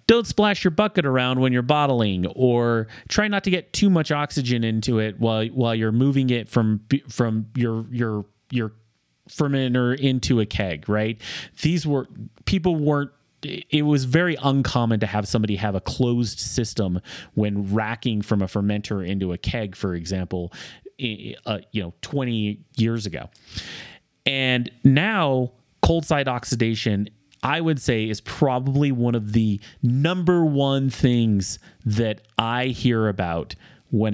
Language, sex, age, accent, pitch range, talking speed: English, male, 30-49, American, 110-140 Hz, 150 wpm